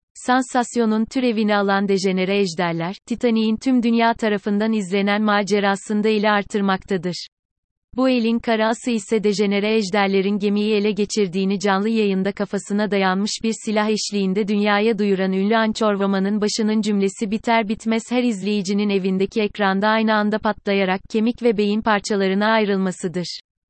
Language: Turkish